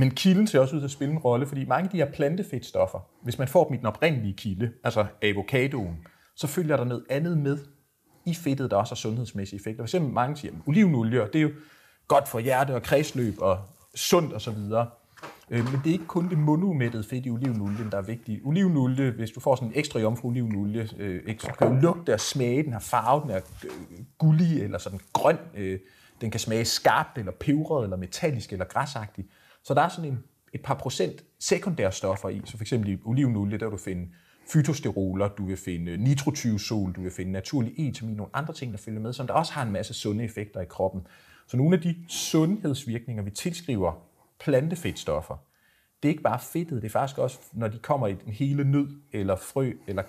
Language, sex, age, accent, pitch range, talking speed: Danish, male, 30-49, native, 105-145 Hz, 210 wpm